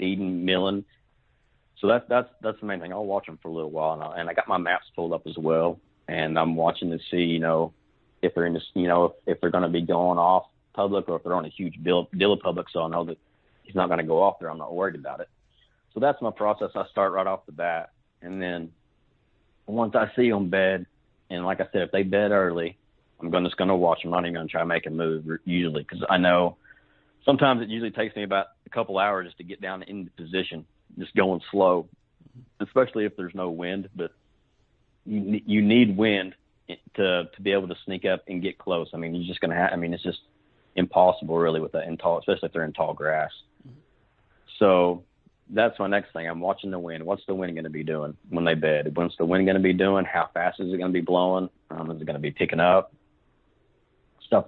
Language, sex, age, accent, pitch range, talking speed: English, male, 40-59, American, 85-100 Hz, 240 wpm